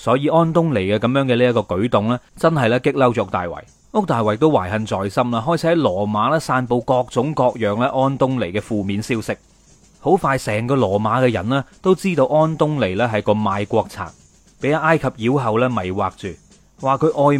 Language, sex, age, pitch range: Chinese, male, 30-49, 105-150 Hz